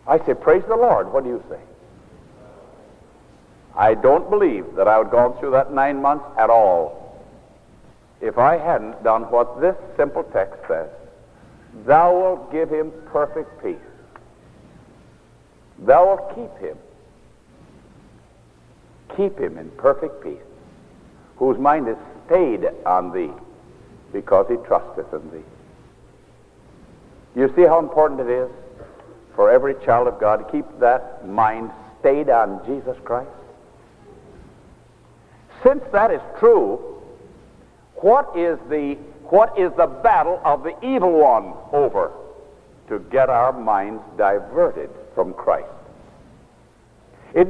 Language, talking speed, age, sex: English, 125 wpm, 60-79, male